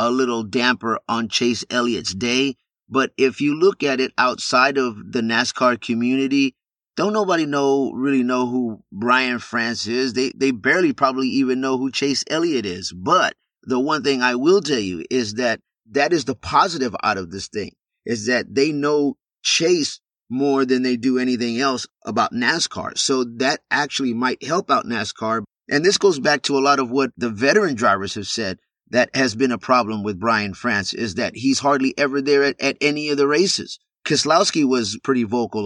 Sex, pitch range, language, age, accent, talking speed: male, 115-140 Hz, English, 30-49, American, 190 wpm